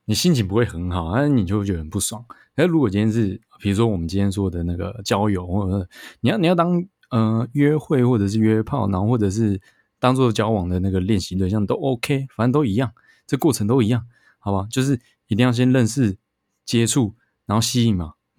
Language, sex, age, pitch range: Chinese, male, 20-39, 100-125 Hz